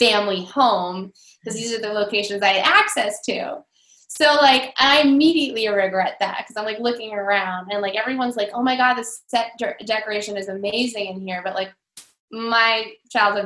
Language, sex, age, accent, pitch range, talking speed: English, female, 20-39, American, 200-285 Hz, 185 wpm